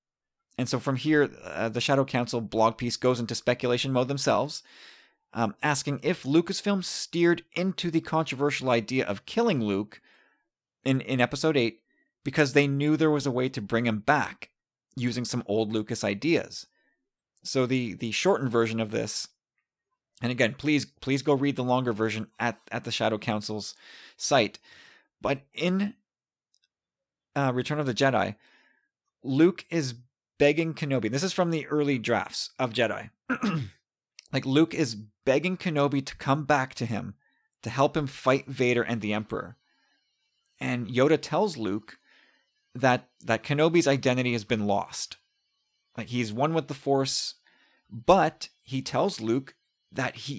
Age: 30-49